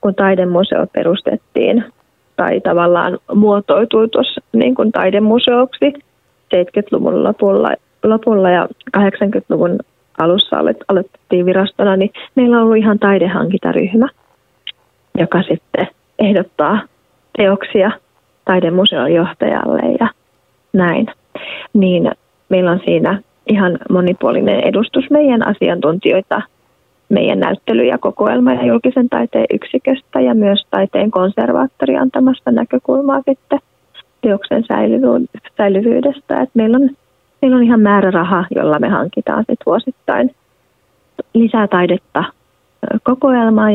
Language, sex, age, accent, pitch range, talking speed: Finnish, female, 30-49, native, 185-255 Hz, 95 wpm